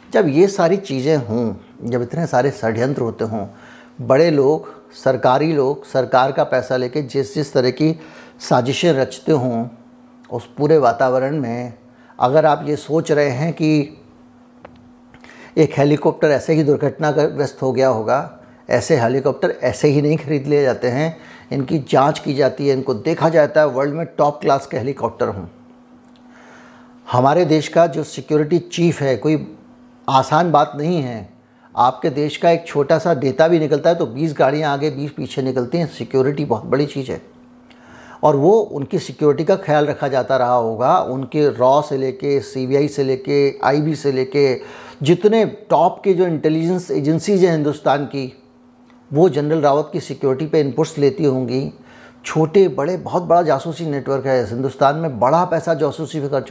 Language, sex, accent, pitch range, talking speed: Hindi, male, native, 135-165 Hz, 165 wpm